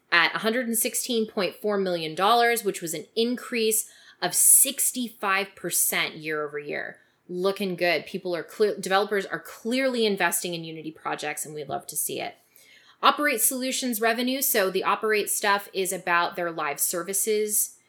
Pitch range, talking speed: 175-225 Hz, 140 wpm